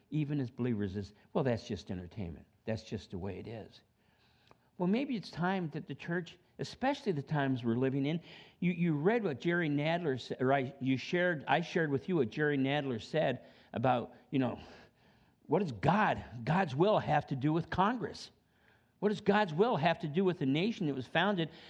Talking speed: 200 wpm